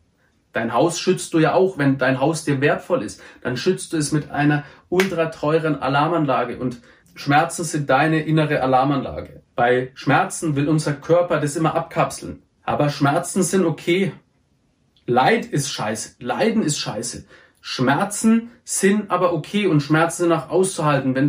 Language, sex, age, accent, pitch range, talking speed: German, male, 30-49, German, 135-175 Hz, 155 wpm